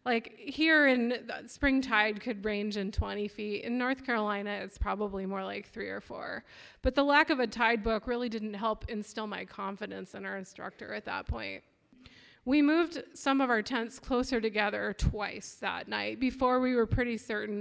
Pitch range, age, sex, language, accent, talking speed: 215-265 Hz, 20-39, female, English, American, 185 wpm